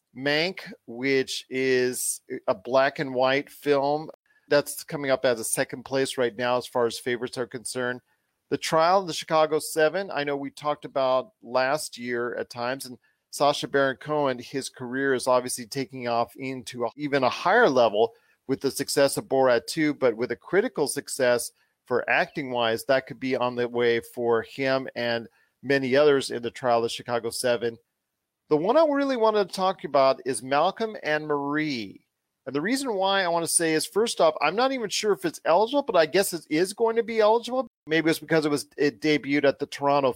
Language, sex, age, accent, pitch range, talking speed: English, male, 40-59, American, 125-170 Hz, 200 wpm